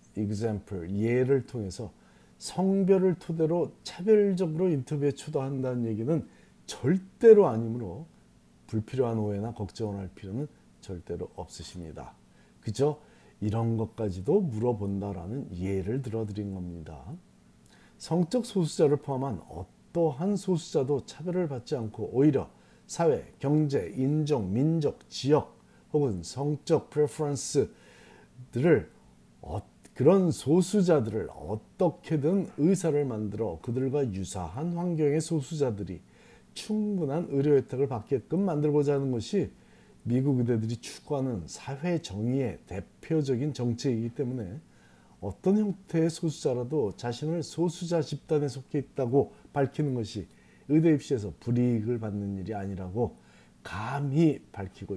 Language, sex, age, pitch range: Korean, male, 40-59, 100-150 Hz